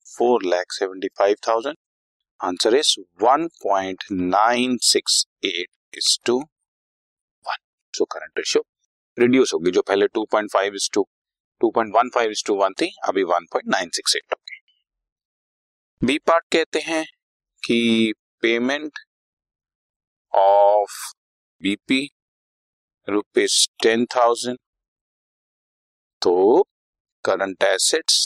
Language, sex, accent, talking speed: English, male, Indian, 90 wpm